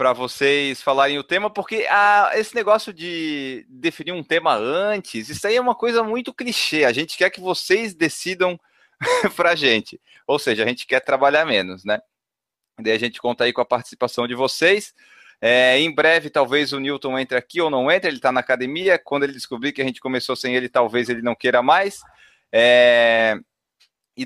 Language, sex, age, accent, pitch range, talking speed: Portuguese, male, 30-49, Brazilian, 140-195 Hz, 190 wpm